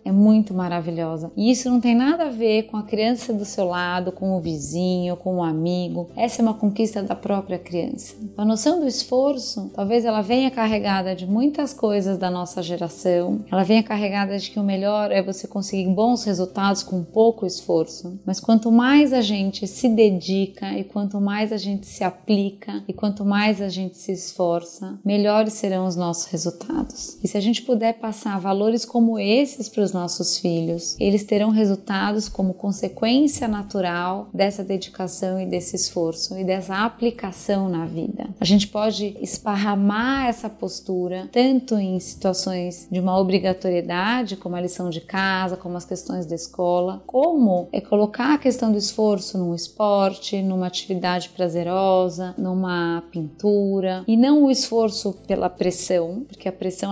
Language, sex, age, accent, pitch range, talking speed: Portuguese, female, 20-39, Brazilian, 185-225 Hz, 165 wpm